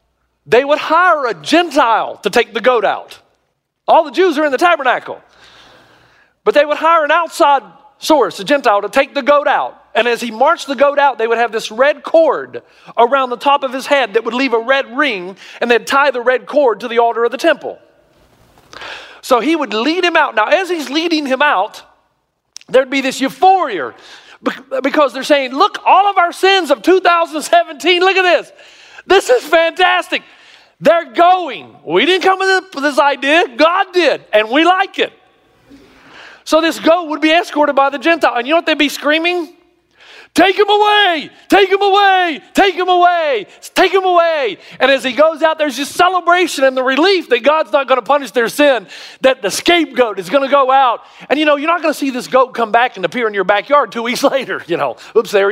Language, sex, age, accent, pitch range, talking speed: English, male, 40-59, American, 250-340 Hz, 210 wpm